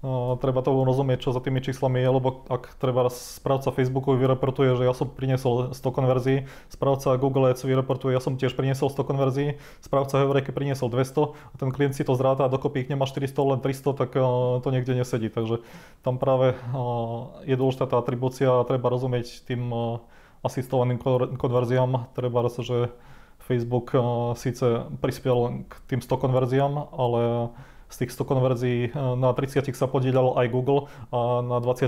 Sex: male